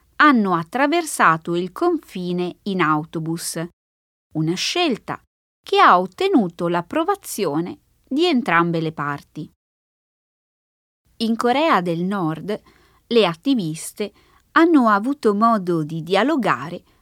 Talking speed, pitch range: 95 wpm, 175-275 Hz